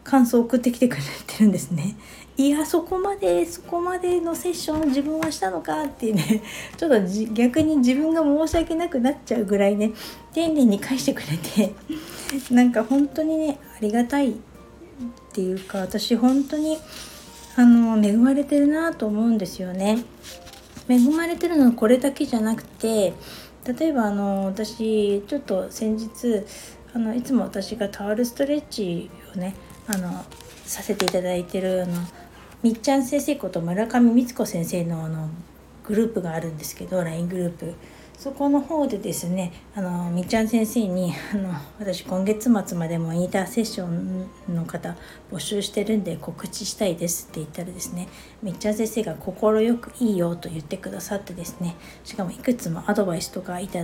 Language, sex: Japanese, female